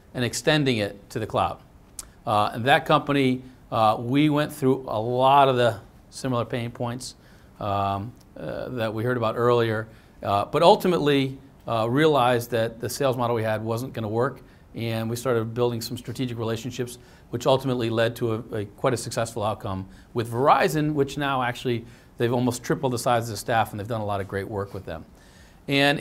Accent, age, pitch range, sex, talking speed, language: American, 40-59, 115-135 Hz, male, 195 wpm, English